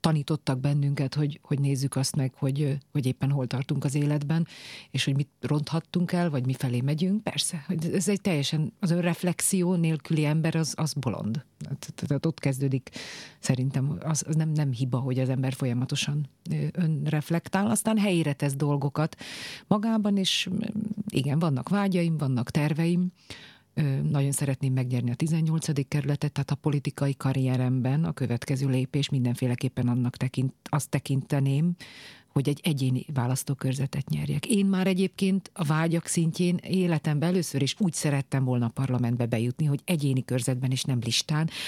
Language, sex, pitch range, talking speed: English, female, 130-165 Hz, 150 wpm